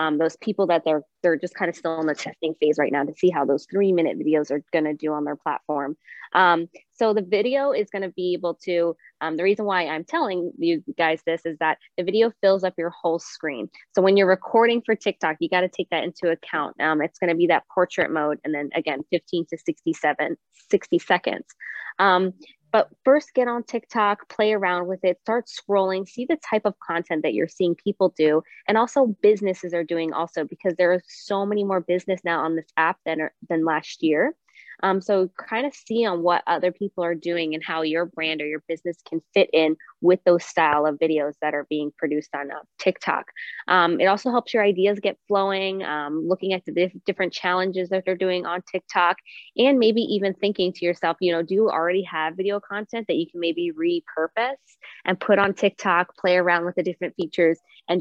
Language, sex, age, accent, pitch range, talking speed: English, female, 20-39, American, 160-205 Hz, 220 wpm